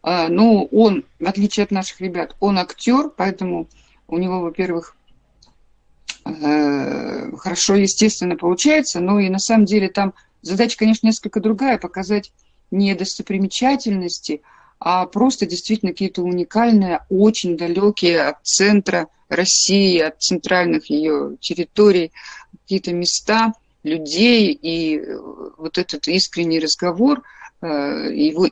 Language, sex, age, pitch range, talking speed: Russian, female, 50-69, 170-220 Hz, 110 wpm